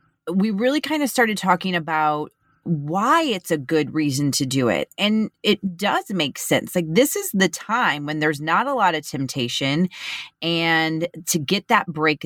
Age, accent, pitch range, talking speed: 30-49, American, 155-215 Hz, 180 wpm